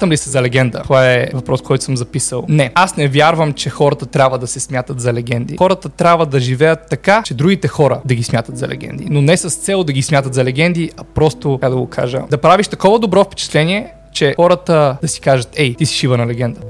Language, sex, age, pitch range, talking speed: Bulgarian, male, 20-39, 130-160 Hz, 235 wpm